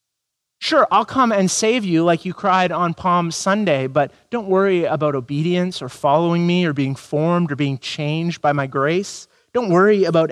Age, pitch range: 30-49, 125-165 Hz